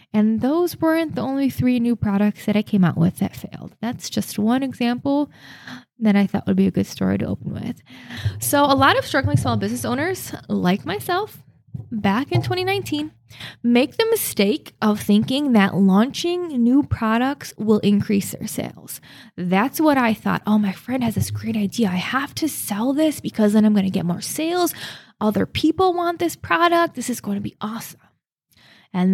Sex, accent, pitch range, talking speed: female, American, 200-285 Hz, 190 wpm